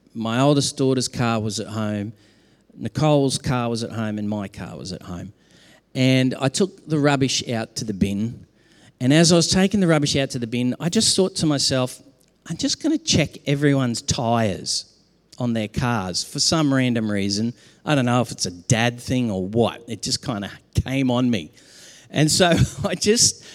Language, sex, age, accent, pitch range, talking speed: English, male, 50-69, Australian, 115-150 Hz, 200 wpm